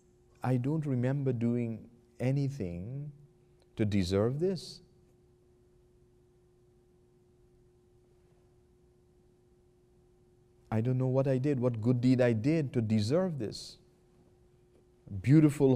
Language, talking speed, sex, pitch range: English, 90 wpm, male, 105-125 Hz